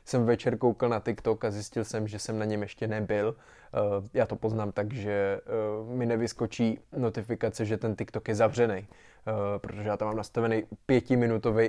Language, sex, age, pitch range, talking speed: Czech, male, 20-39, 110-130 Hz, 170 wpm